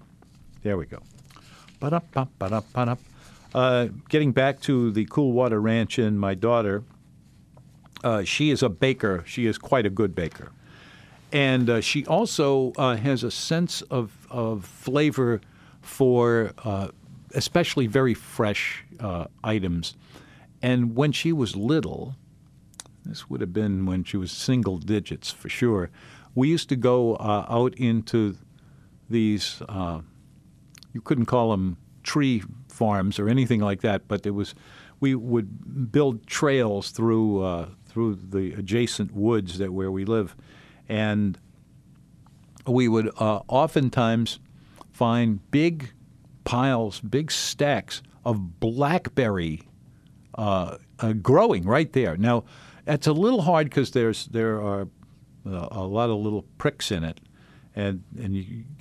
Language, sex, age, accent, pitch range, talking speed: English, male, 50-69, American, 105-135 Hz, 140 wpm